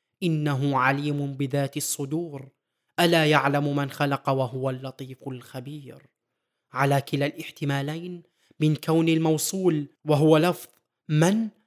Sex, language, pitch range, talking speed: male, Arabic, 140-165 Hz, 105 wpm